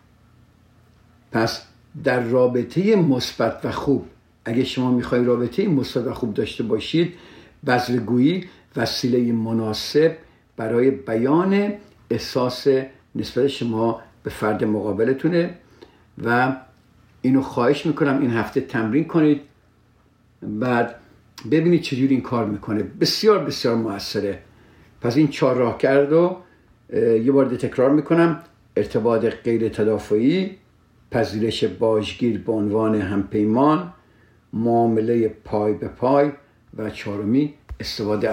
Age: 60-79